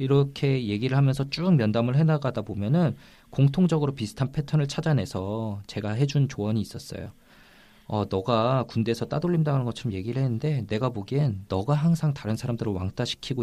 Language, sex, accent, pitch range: Korean, male, native, 105-140 Hz